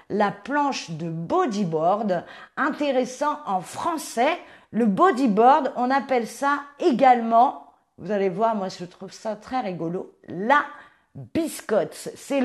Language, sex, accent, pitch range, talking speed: French, female, French, 205-275 Hz, 120 wpm